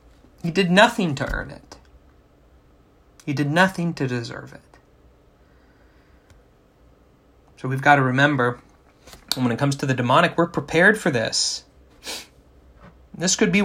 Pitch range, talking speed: 120-170 Hz, 130 wpm